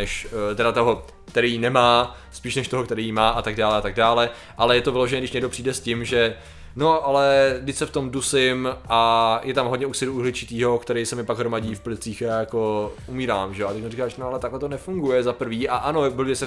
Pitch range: 115-140 Hz